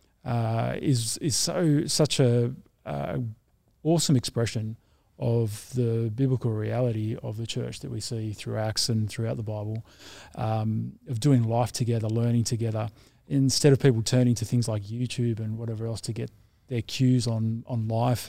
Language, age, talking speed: English, 20-39, 165 wpm